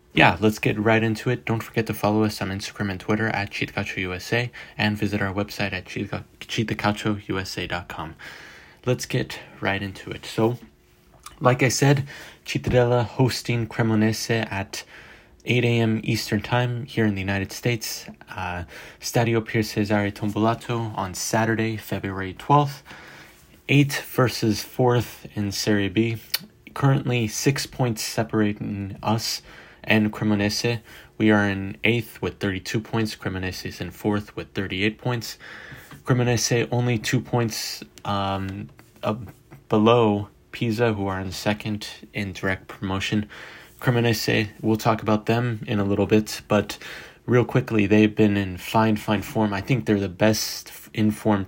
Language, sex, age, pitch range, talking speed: English, male, 20-39, 100-115 Hz, 140 wpm